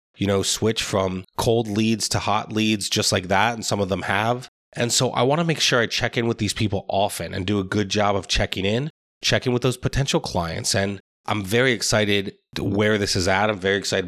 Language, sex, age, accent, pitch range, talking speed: English, male, 20-39, American, 95-115 Hz, 235 wpm